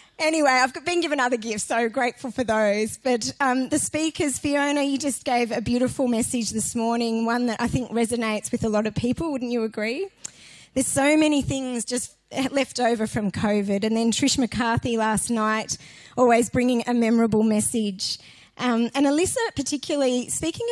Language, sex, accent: English, female, Australian